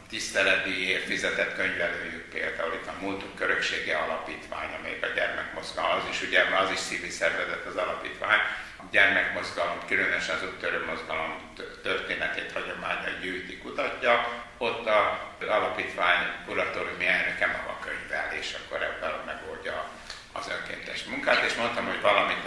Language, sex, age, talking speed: Hungarian, male, 60-79, 135 wpm